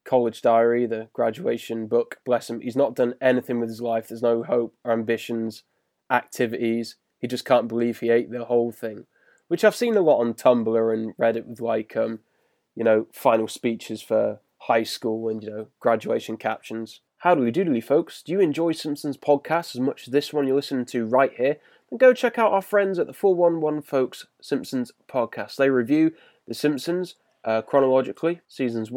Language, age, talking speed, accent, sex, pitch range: English, 20-39, 195 wpm, British, male, 115-150 Hz